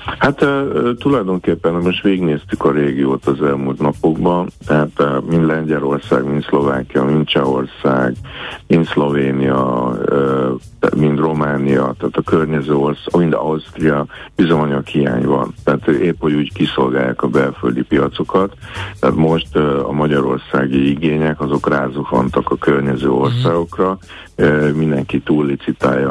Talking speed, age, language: 125 wpm, 60-79, Hungarian